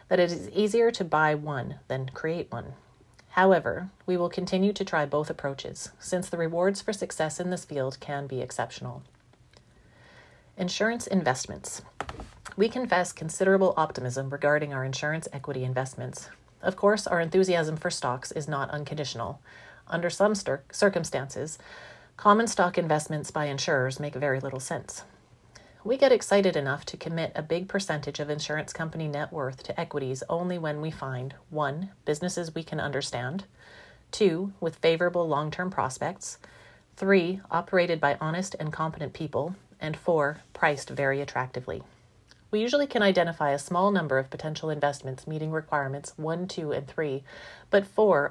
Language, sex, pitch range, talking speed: English, female, 140-180 Hz, 150 wpm